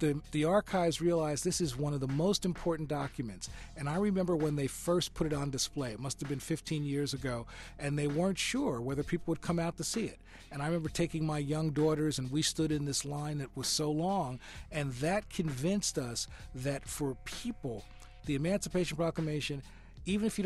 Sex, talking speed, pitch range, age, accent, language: male, 210 wpm, 130-170 Hz, 40-59, American, English